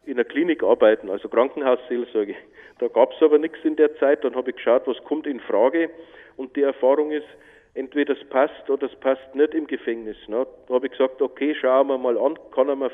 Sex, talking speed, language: male, 220 wpm, German